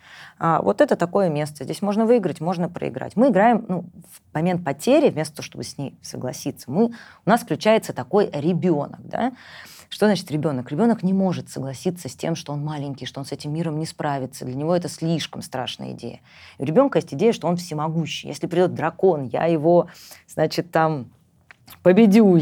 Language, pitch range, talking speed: Russian, 145-200 Hz, 175 wpm